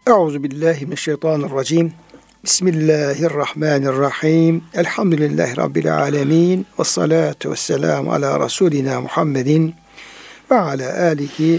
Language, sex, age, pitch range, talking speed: Turkish, male, 60-79, 145-180 Hz, 105 wpm